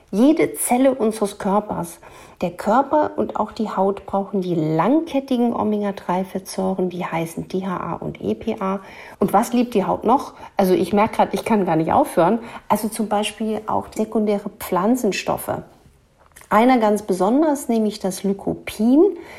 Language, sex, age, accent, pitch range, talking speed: German, female, 50-69, German, 185-225 Hz, 140 wpm